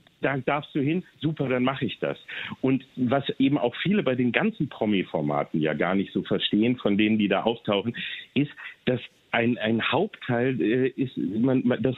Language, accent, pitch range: German, German, 115-150 Hz